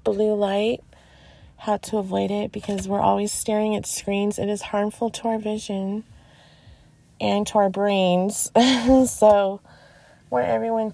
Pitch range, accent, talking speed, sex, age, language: 170-210 Hz, American, 135 wpm, female, 20-39, English